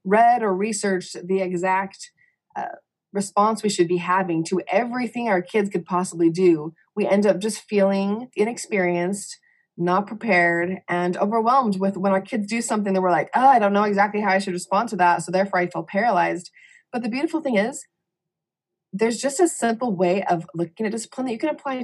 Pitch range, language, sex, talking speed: 175-220 Hz, English, female, 195 wpm